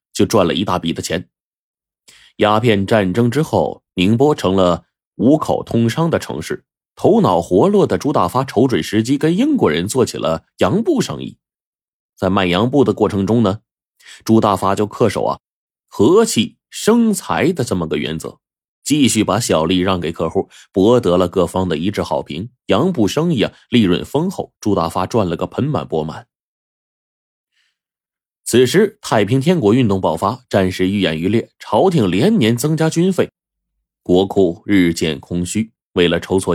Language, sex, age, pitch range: Chinese, male, 30-49, 90-125 Hz